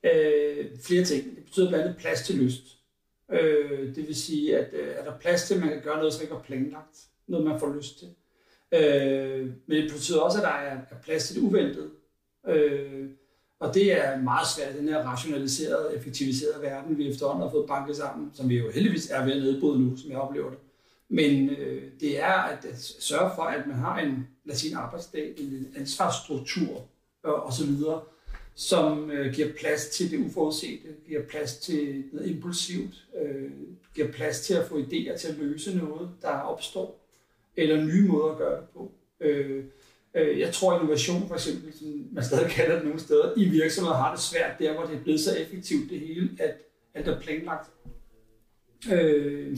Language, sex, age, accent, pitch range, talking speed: Danish, male, 60-79, native, 135-160 Hz, 190 wpm